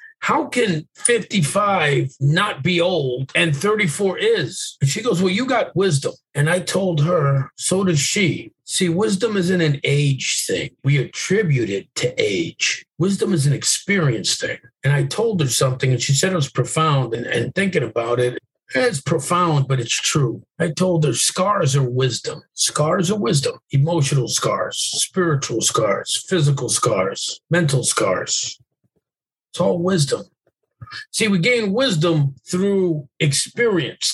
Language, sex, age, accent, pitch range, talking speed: English, male, 50-69, American, 140-180 Hz, 155 wpm